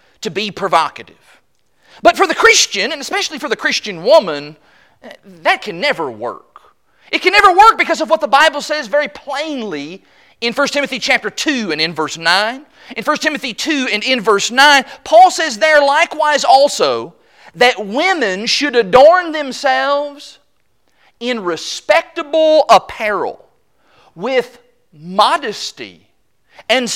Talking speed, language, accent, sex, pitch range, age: 140 wpm, English, American, male, 215-310 Hz, 40-59